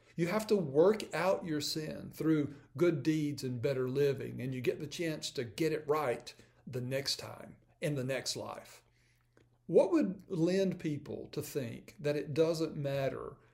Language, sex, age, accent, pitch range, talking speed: English, male, 50-69, American, 130-170 Hz, 175 wpm